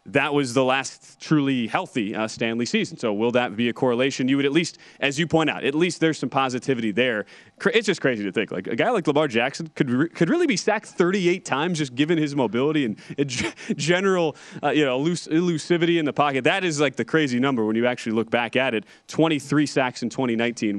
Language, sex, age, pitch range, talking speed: English, male, 30-49, 125-165 Hz, 235 wpm